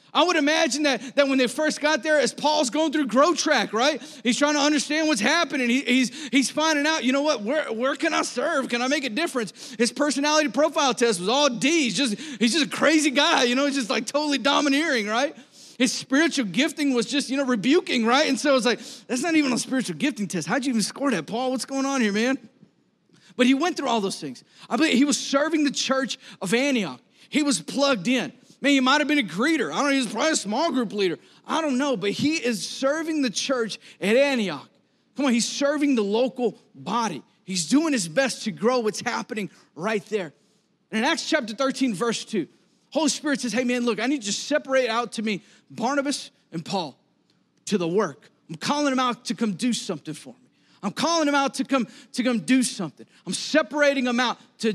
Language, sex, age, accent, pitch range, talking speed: English, male, 30-49, American, 225-285 Hz, 230 wpm